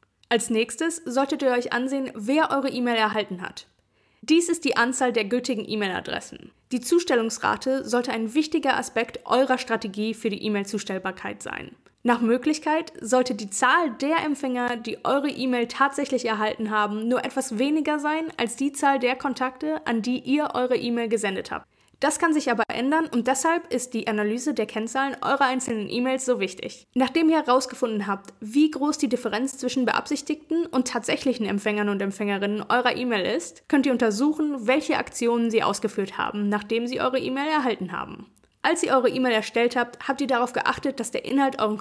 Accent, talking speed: German, 175 wpm